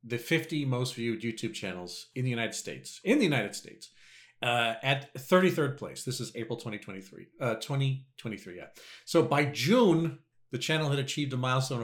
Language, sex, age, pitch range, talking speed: English, male, 40-59, 115-155 Hz, 170 wpm